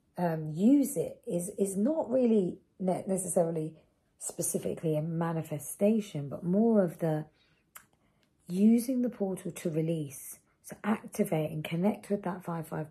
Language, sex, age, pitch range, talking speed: English, female, 40-59, 155-195 Hz, 125 wpm